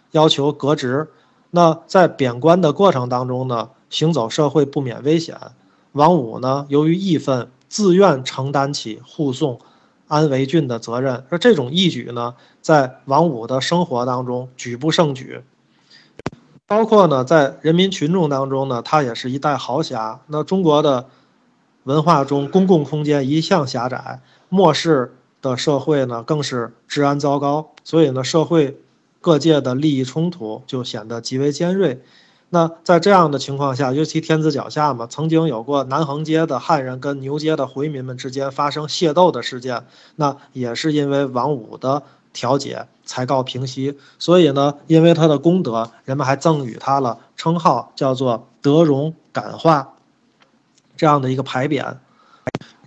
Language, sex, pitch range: Chinese, male, 130-160 Hz